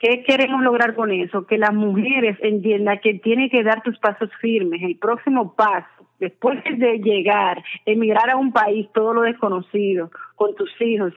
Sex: female